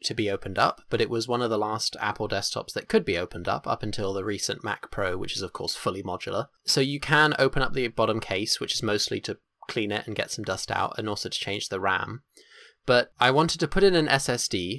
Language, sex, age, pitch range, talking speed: English, male, 20-39, 105-145 Hz, 255 wpm